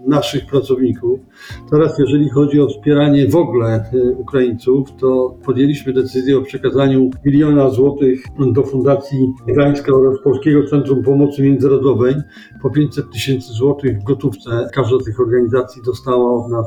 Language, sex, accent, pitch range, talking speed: Polish, male, native, 125-140 Hz, 135 wpm